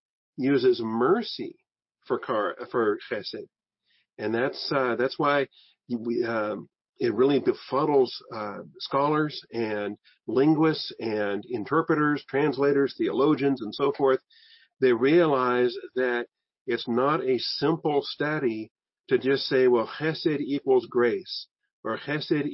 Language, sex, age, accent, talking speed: English, male, 50-69, American, 115 wpm